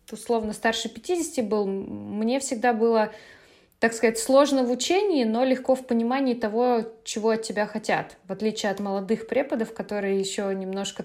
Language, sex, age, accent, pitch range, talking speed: Russian, female, 20-39, native, 195-245 Hz, 160 wpm